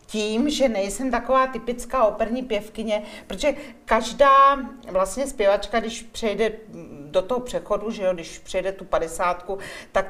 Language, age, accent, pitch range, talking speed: Czech, 40-59, native, 180-225 Hz, 125 wpm